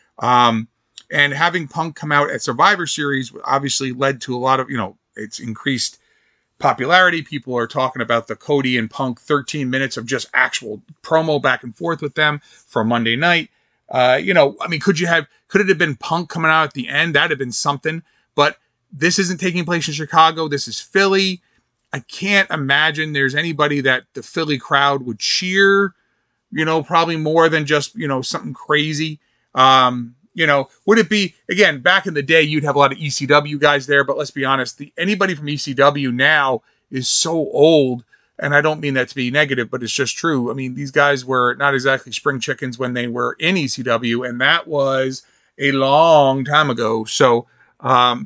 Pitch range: 130-165 Hz